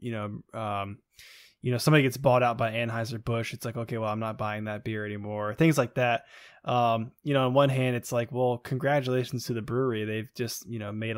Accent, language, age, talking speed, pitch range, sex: American, English, 20-39, 230 wpm, 110-125 Hz, male